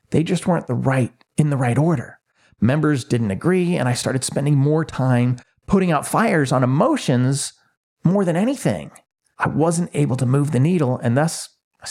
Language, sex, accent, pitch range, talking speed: English, male, American, 125-180 Hz, 180 wpm